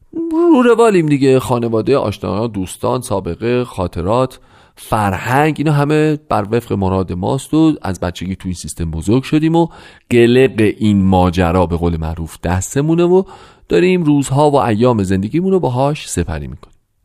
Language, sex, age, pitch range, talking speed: Persian, male, 40-59, 95-150 Hz, 140 wpm